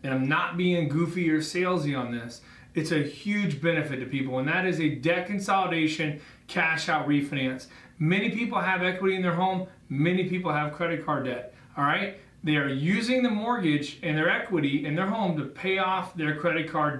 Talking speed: 200 wpm